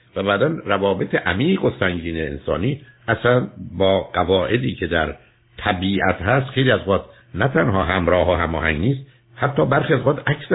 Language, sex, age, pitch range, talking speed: Persian, male, 60-79, 85-120 Hz, 155 wpm